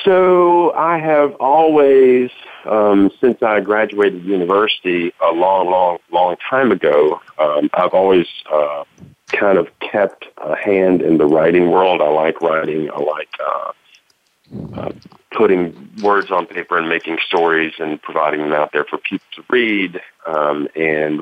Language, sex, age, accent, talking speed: English, male, 40-59, American, 150 wpm